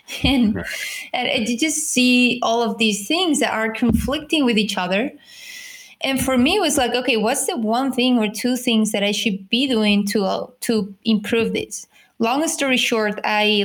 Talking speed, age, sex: 190 wpm, 20-39, female